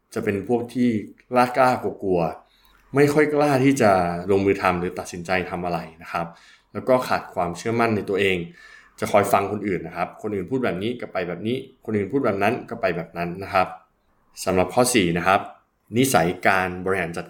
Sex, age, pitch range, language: male, 20-39, 90-125 Hz, Thai